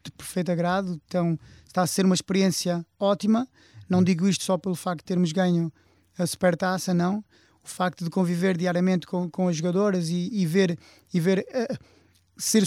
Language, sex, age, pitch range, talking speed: Portuguese, male, 20-39, 180-205 Hz, 170 wpm